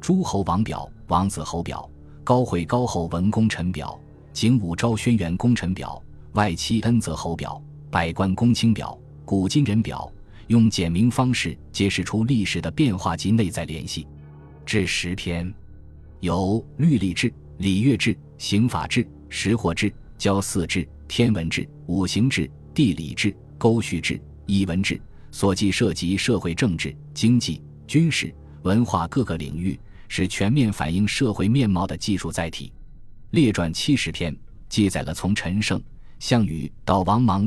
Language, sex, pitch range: Chinese, male, 85-115 Hz